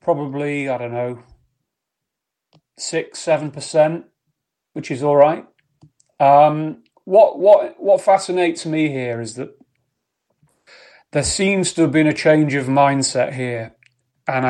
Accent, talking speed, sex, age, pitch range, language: British, 130 wpm, male, 30-49, 125-155 Hz, English